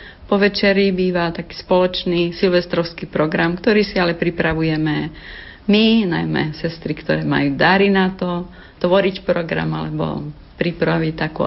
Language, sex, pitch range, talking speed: Slovak, female, 155-185 Hz, 125 wpm